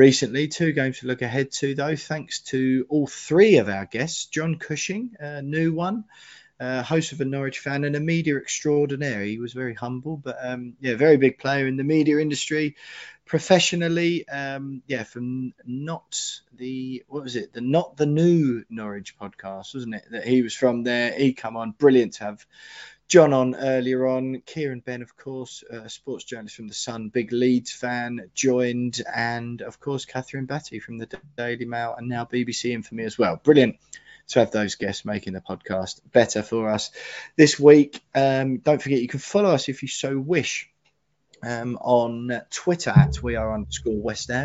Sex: male